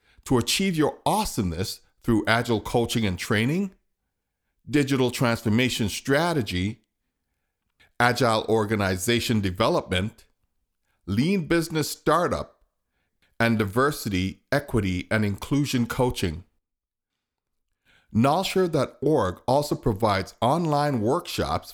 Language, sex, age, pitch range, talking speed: English, male, 50-69, 95-125 Hz, 80 wpm